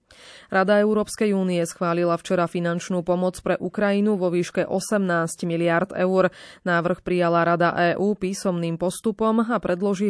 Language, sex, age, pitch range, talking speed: Slovak, female, 20-39, 170-200 Hz, 130 wpm